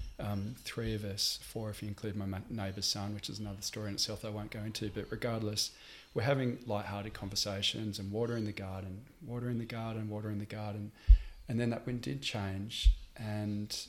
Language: English